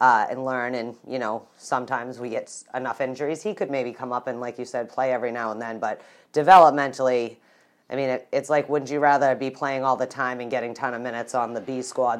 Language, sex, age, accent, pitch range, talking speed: English, female, 30-49, American, 115-145 Hz, 240 wpm